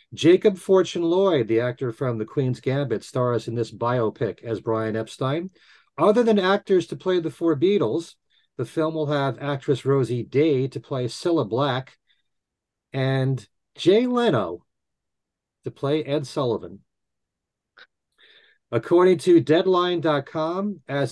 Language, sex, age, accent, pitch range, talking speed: English, male, 40-59, American, 120-165 Hz, 130 wpm